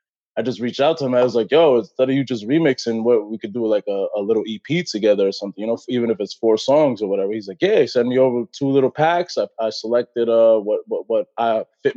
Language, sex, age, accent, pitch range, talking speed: English, male, 20-39, American, 110-130 Hz, 275 wpm